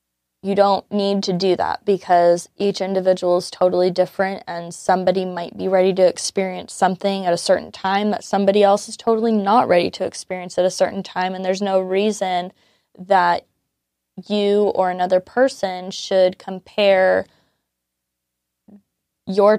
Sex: female